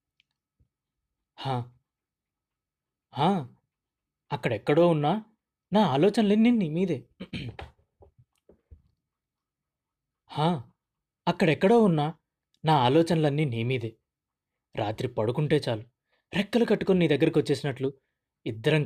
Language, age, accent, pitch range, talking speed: Telugu, 20-39, native, 120-155 Hz, 65 wpm